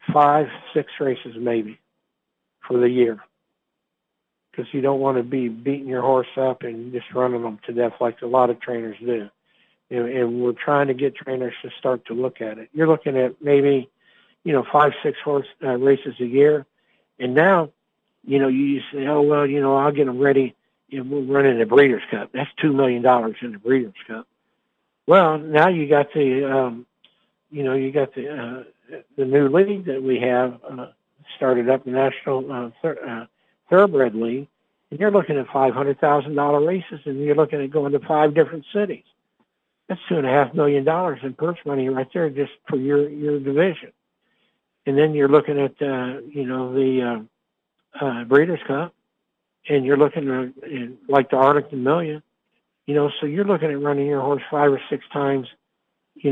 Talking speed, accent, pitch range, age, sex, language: 195 wpm, American, 125-150 Hz, 60-79, male, English